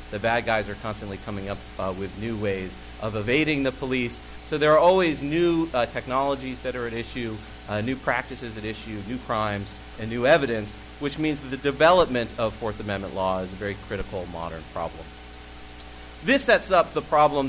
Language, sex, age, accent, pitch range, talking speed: English, male, 40-59, American, 100-135 Hz, 190 wpm